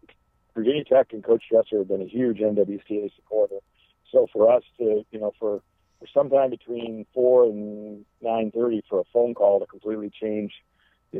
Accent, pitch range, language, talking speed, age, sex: American, 105-140 Hz, English, 170 wpm, 50-69, male